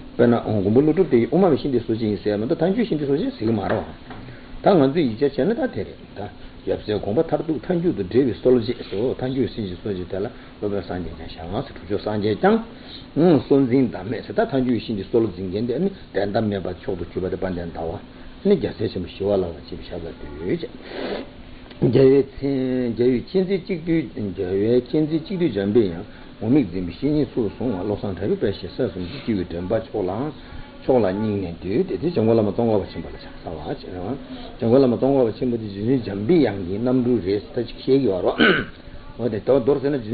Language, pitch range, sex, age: Italian, 100-130 Hz, male, 60-79